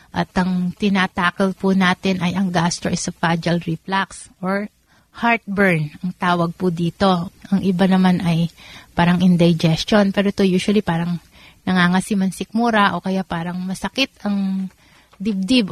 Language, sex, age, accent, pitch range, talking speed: Filipino, female, 30-49, native, 175-200 Hz, 120 wpm